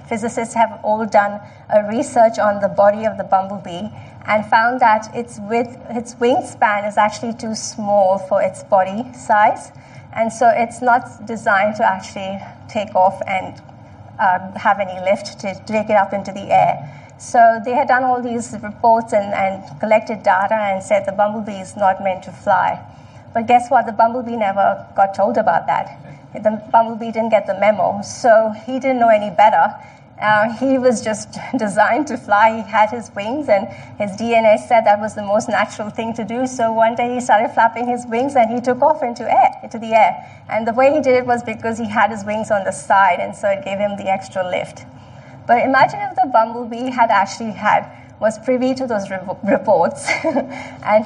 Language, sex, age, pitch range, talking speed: English, female, 30-49, 200-235 Hz, 195 wpm